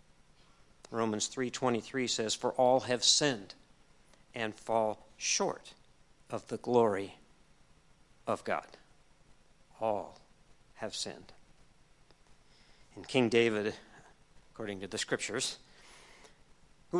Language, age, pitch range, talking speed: English, 50-69, 115-145 Hz, 90 wpm